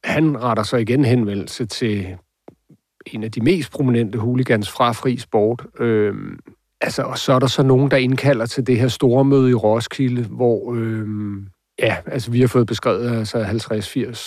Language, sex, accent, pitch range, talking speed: Danish, male, native, 110-125 Hz, 180 wpm